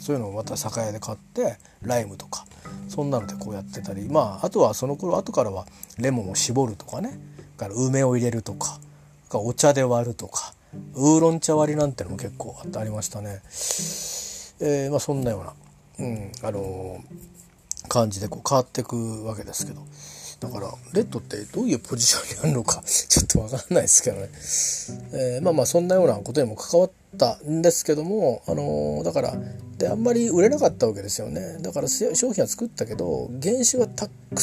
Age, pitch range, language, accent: 40-59, 100-155 Hz, Japanese, native